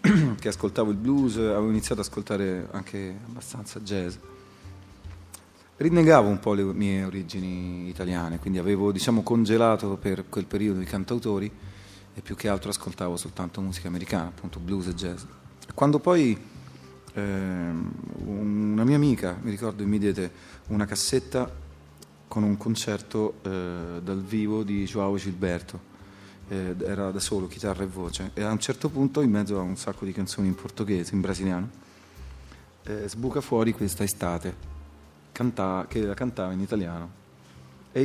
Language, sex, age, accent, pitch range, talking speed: Italian, male, 30-49, native, 90-105 Hz, 150 wpm